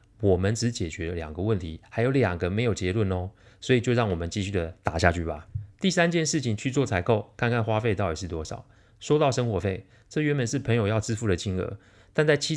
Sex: male